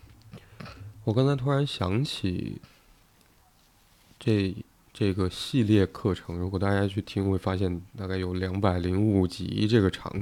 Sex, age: male, 20-39